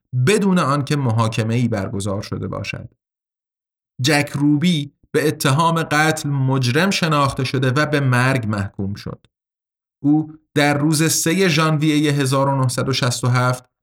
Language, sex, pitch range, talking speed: Persian, male, 125-160 Hz, 115 wpm